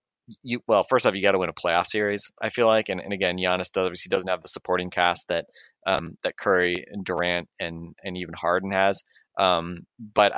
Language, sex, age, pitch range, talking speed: English, male, 20-39, 85-100 Hz, 220 wpm